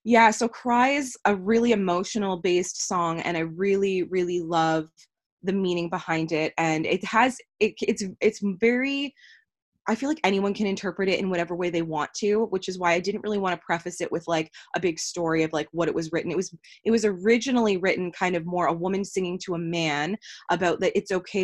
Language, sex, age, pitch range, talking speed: English, female, 20-39, 165-195 Hz, 215 wpm